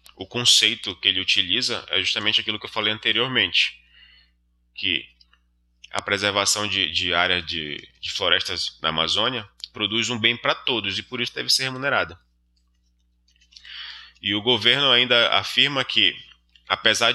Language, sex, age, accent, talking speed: Portuguese, male, 20-39, Brazilian, 145 wpm